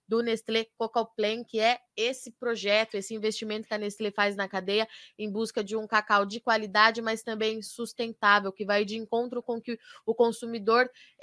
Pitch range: 205-230 Hz